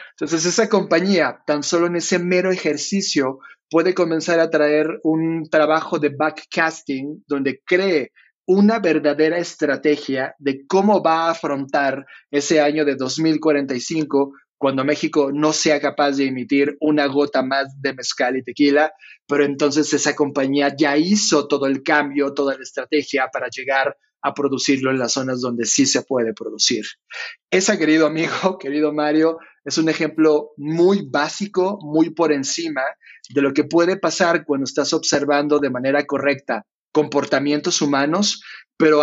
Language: Spanish